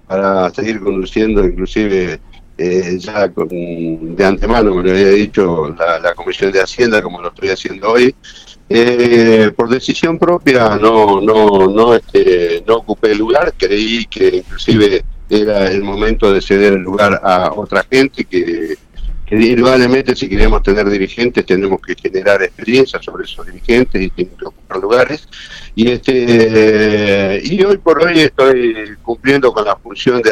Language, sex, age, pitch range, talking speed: Spanish, male, 60-79, 100-135 Hz, 150 wpm